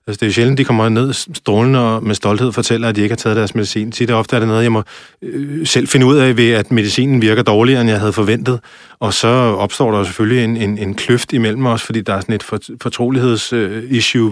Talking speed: 245 wpm